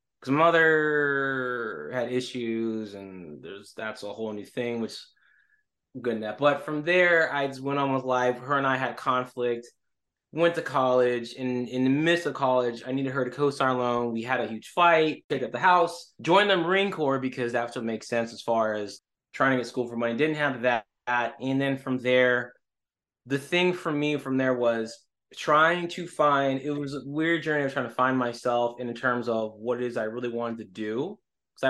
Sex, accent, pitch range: male, American, 115-140 Hz